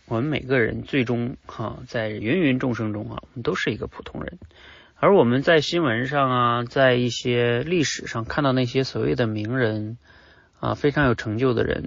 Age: 30-49